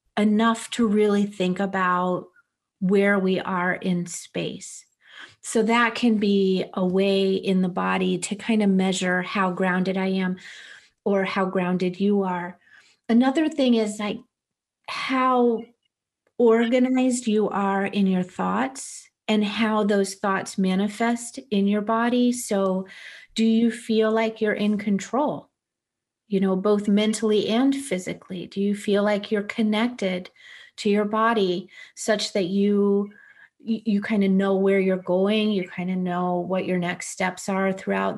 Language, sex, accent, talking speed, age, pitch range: English, female, American, 150 wpm, 40-59, 185-225 Hz